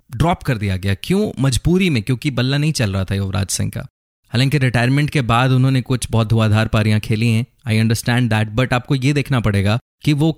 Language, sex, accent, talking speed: Hindi, male, native, 215 wpm